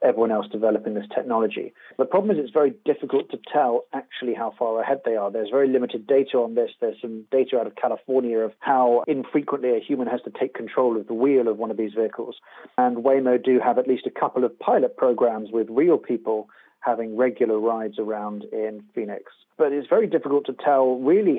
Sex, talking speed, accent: male, 210 wpm, British